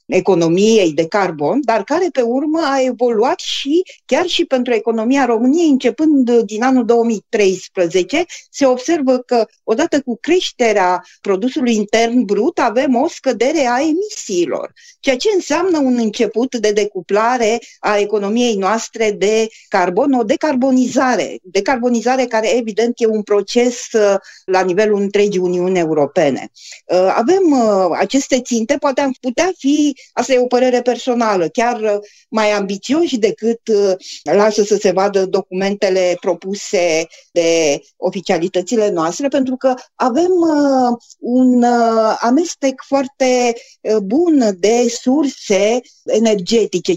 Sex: female